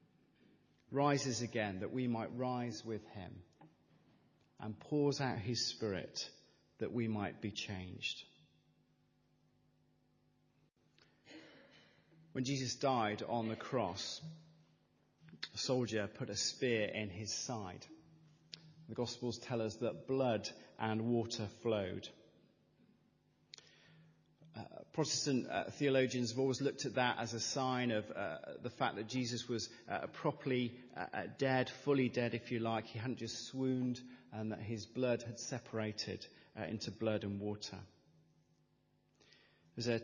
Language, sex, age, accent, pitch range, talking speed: English, male, 40-59, British, 110-135 Hz, 125 wpm